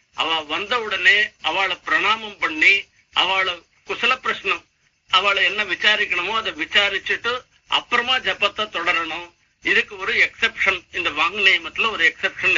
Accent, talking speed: native, 110 wpm